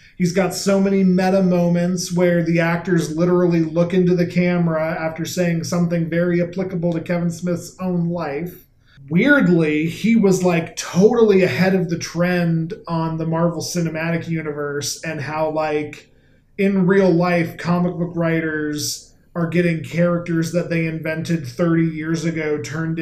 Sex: male